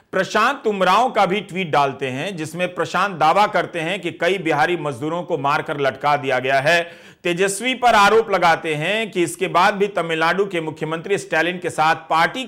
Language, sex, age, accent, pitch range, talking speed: Hindi, male, 50-69, native, 160-220 Hz, 185 wpm